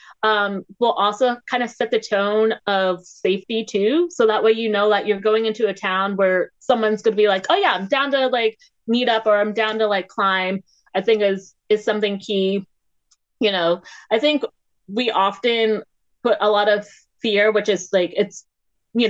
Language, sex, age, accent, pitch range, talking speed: English, female, 20-39, American, 195-235 Hz, 200 wpm